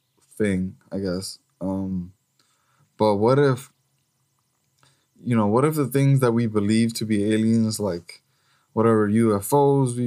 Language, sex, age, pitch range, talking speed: English, male, 20-39, 100-125 Hz, 135 wpm